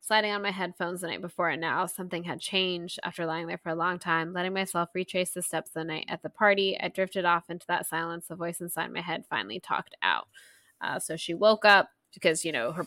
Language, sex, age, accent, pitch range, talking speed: English, female, 10-29, American, 165-205 Hz, 245 wpm